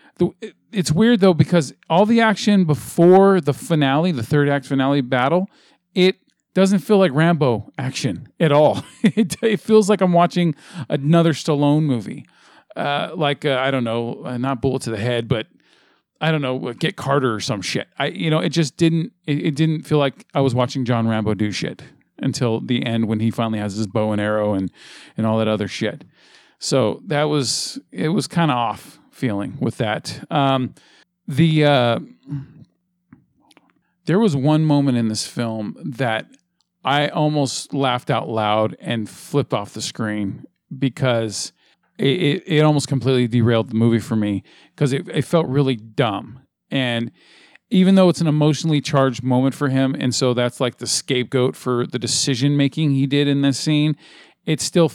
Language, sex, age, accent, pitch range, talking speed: English, male, 40-59, American, 120-160 Hz, 175 wpm